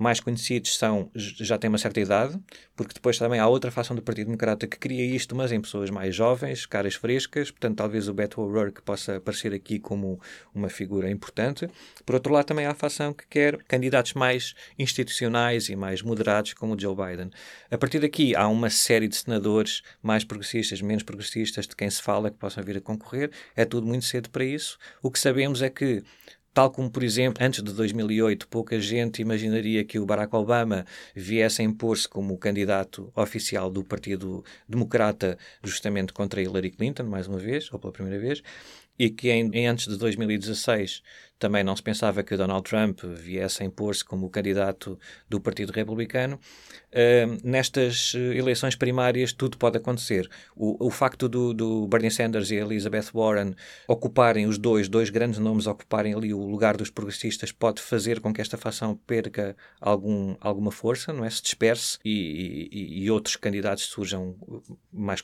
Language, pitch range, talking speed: Portuguese, 100-120 Hz, 175 wpm